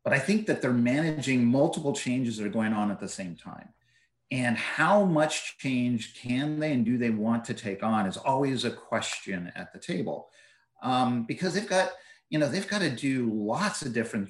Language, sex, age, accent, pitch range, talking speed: English, male, 50-69, American, 110-150 Hz, 205 wpm